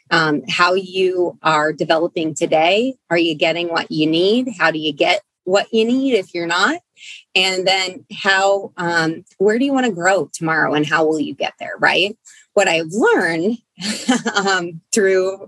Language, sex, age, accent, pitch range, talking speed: English, female, 20-39, American, 160-195 Hz, 175 wpm